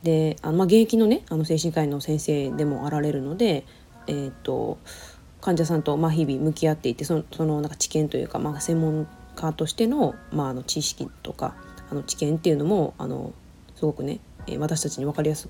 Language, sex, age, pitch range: Japanese, female, 20-39, 150-195 Hz